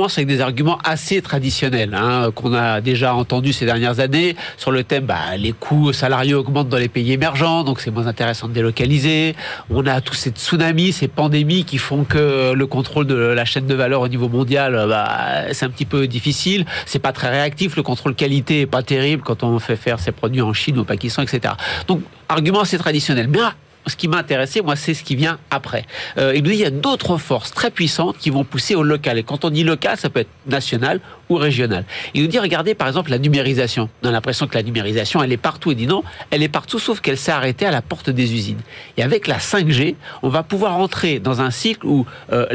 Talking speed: 230 wpm